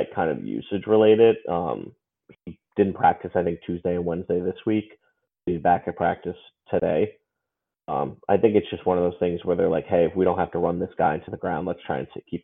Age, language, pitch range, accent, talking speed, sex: 30-49, English, 90-110 Hz, American, 230 wpm, male